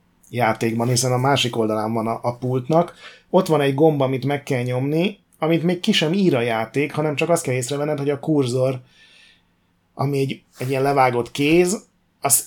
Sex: male